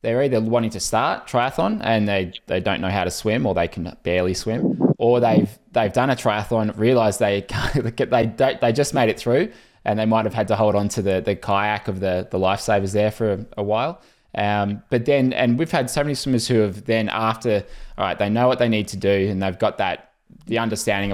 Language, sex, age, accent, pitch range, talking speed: English, male, 20-39, Australian, 95-115 Hz, 240 wpm